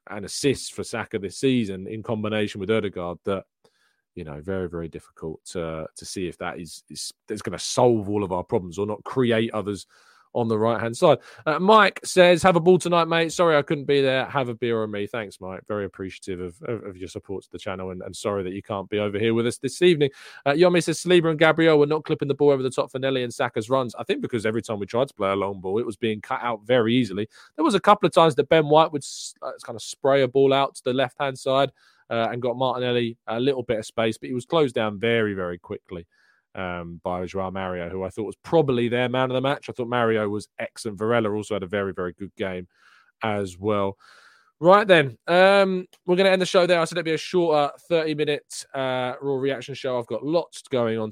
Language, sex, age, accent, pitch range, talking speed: English, male, 20-39, British, 105-140 Hz, 250 wpm